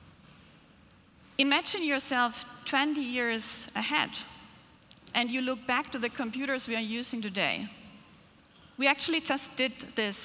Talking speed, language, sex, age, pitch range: 125 wpm, English, female, 40-59, 215-270 Hz